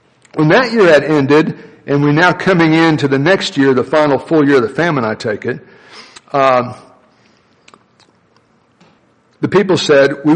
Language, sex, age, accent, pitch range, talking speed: English, male, 60-79, American, 130-160 Hz, 160 wpm